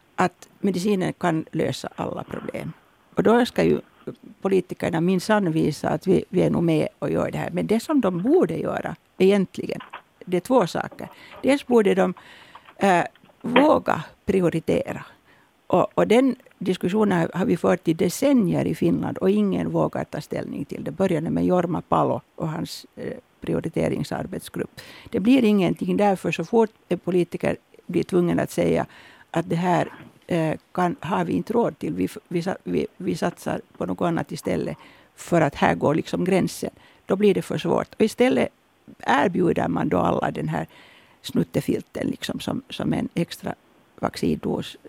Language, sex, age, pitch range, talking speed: Swedish, female, 60-79, 175-220 Hz, 160 wpm